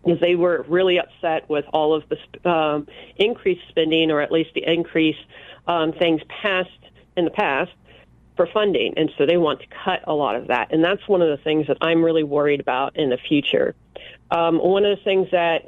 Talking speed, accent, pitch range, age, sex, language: 205 wpm, American, 155-185 Hz, 40-59, female, English